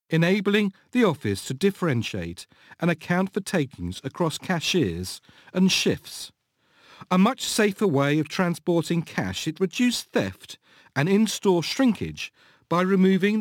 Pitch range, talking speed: 130-200 Hz, 125 wpm